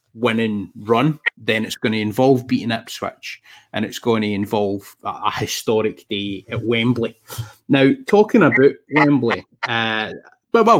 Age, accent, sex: 30-49, British, male